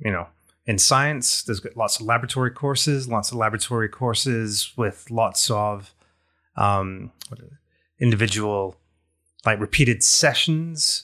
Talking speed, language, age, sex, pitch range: 115 wpm, English, 30-49, male, 100-125 Hz